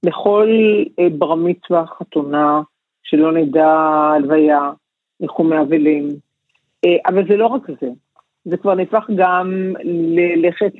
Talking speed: 110 wpm